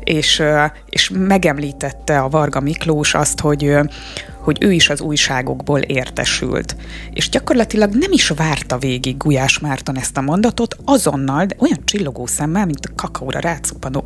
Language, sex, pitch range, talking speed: Hungarian, female, 145-190 Hz, 145 wpm